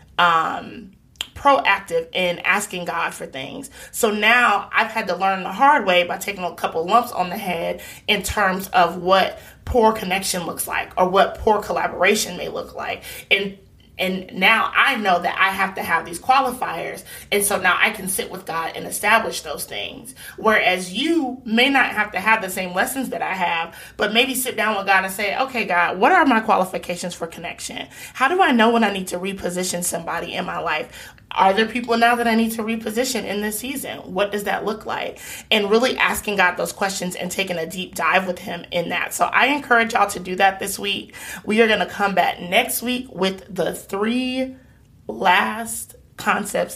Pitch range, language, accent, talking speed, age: 180-230 Hz, English, American, 205 wpm, 30-49